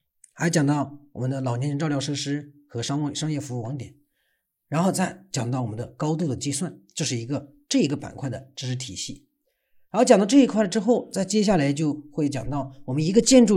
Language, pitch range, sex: Chinese, 130-175 Hz, male